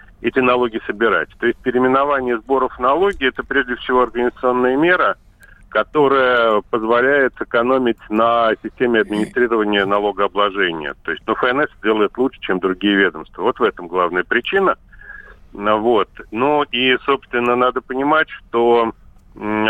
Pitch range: 105-130 Hz